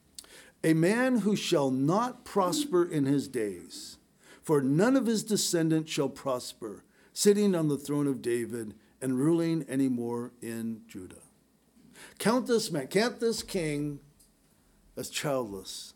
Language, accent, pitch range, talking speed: English, American, 135-175 Hz, 135 wpm